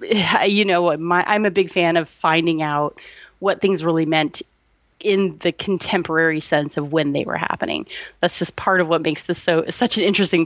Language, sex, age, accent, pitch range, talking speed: English, female, 30-49, American, 155-195 Hz, 195 wpm